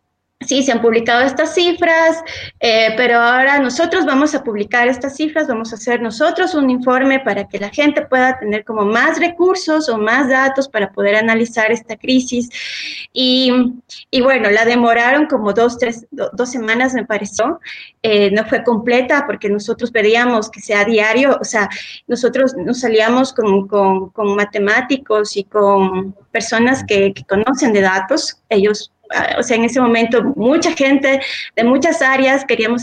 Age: 20-39